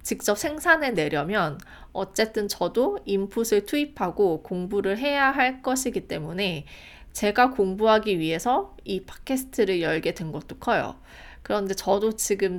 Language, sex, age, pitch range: Korean, female, 20-39, 175-230 Hz